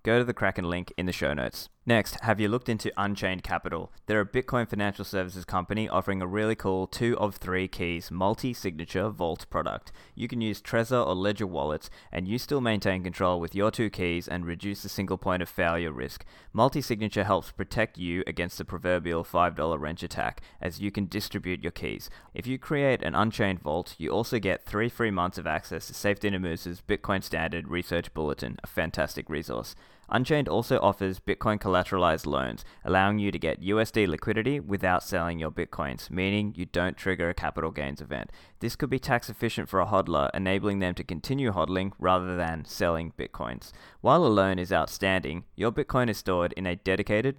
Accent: Australian